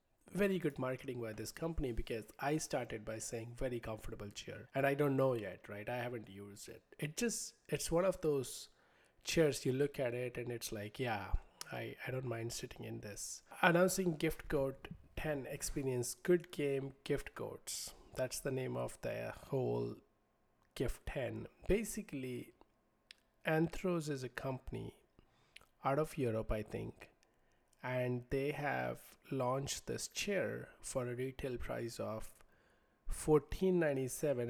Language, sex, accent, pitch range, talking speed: English, male, Indian, 110-145 Hz, 150 wpm